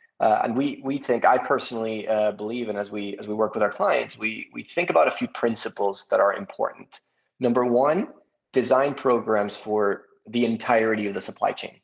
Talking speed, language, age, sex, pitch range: 200 wpm, English, 30-49, male, 105-125 Hz